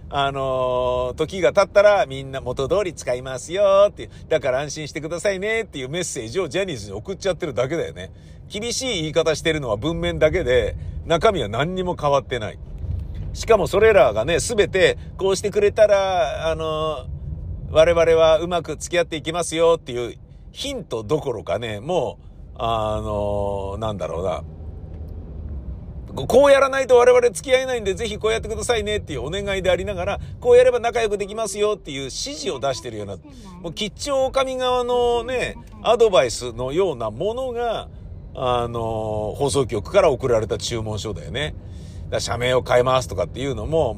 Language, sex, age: Japanese, male, 50-69